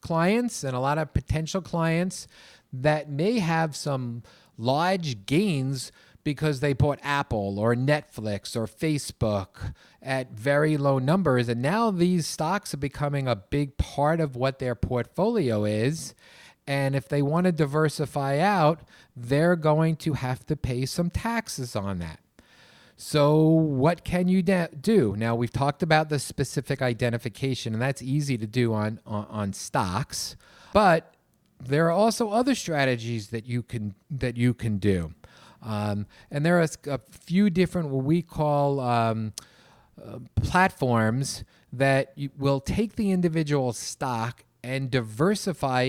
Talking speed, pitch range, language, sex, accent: 145 wpm, 120-160 Hz, English, male, American